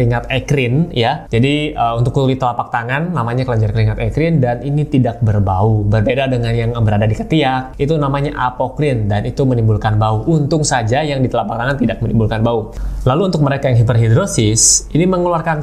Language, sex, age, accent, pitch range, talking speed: Indonesian, male, 20-39, native, 115-145 Hz, 175 wpm